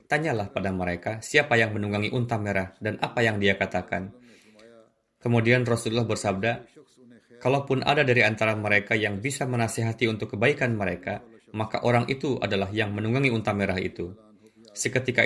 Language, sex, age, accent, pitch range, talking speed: Indonesian, male, 20-39, native, 100-120 Hz, 145 wpm